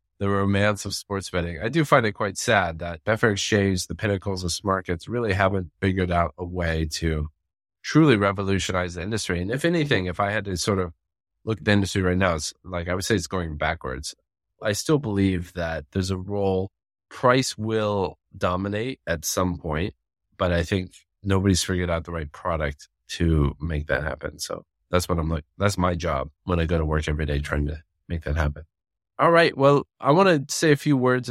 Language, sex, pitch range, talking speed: English, male, 85-100 Hz, 210 wpm